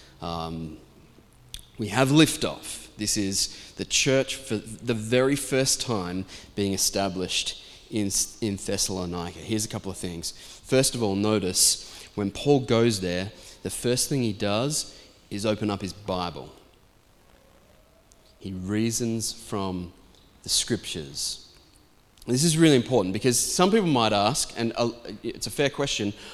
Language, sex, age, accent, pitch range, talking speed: English, male, 20-39, Australian, 100-145 Hz, 135 wpm